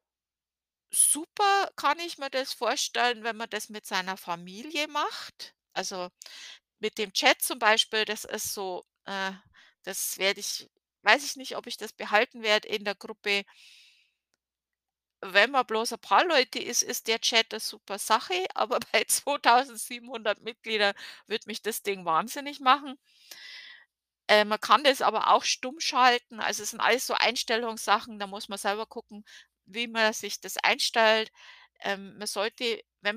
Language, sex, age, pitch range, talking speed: German, female, 50-69, 195-235 Hz, 160 wpm